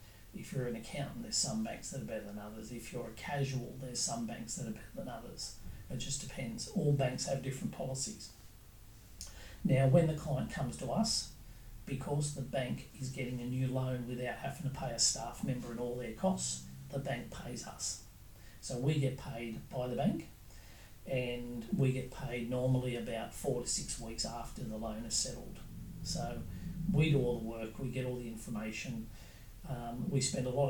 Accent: Australian